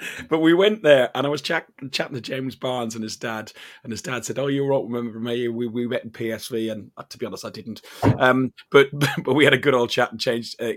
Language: English